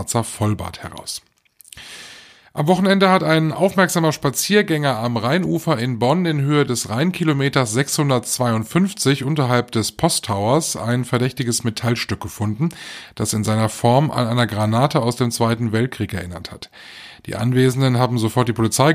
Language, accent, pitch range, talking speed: German, German, 110-140 Hz, 135 wpm